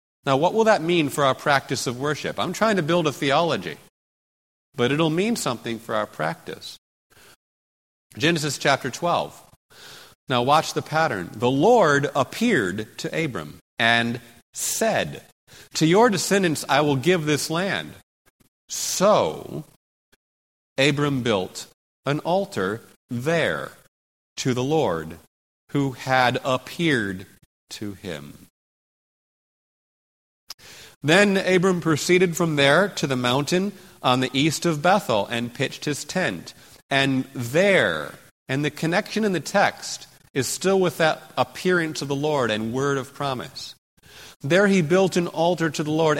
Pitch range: 125-170 Hz